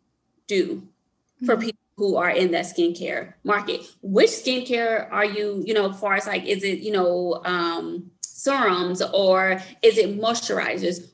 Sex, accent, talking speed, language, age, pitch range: female, American, 155 wpm, English, 20-39, 180-210 Hz